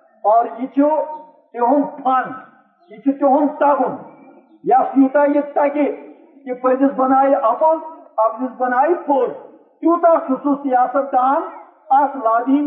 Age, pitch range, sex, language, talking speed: 50-69, 245-310 Hz, male, Urdu, 80 wpm